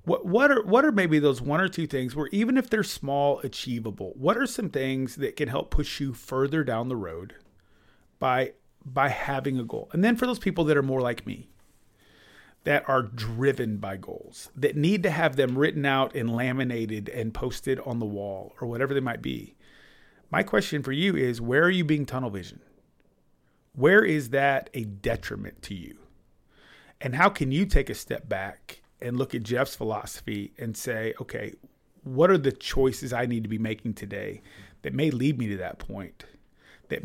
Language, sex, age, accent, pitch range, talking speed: English, male, 30-49, American, 110-145 Hz, 195 wpm